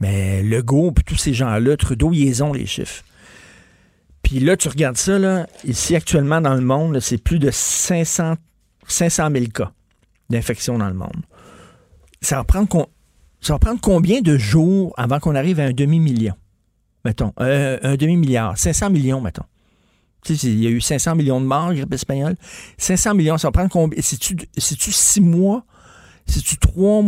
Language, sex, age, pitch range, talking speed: French, male, 50-69, 125-170 Hz, 175 wpm